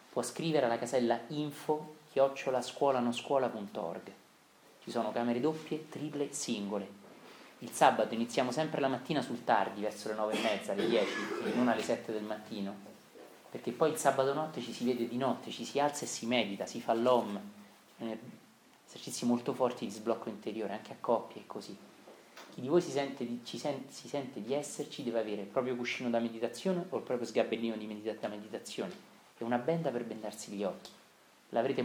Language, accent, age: Italian, native, 30-49